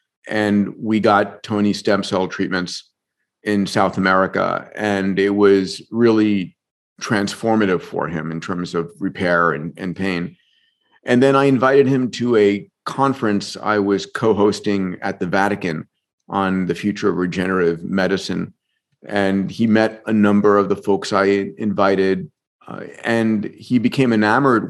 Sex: male